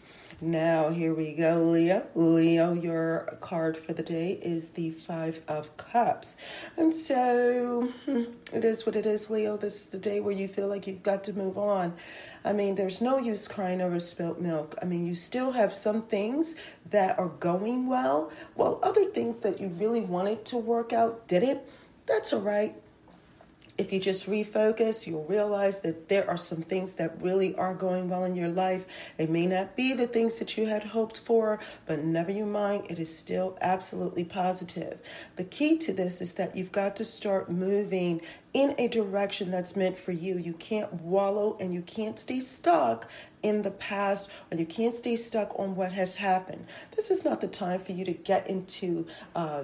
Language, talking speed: English, 190 wpm